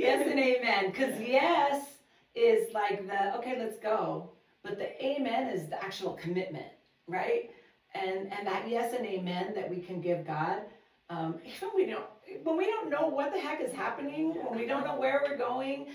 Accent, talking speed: American, 185 wpm